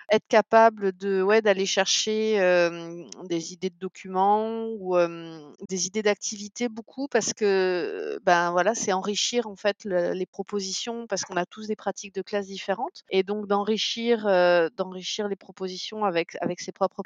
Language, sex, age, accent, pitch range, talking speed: French, female, 30-49, French, 180-215 Hz, 170 wpm